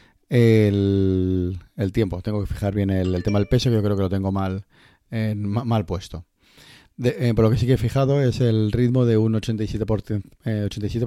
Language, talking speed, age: Spanish, 200 wpm, 30-49